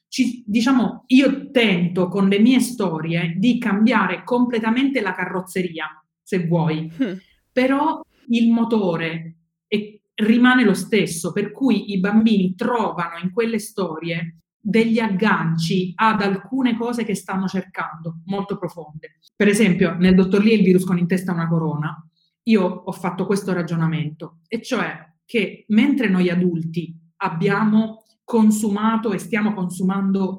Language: Italian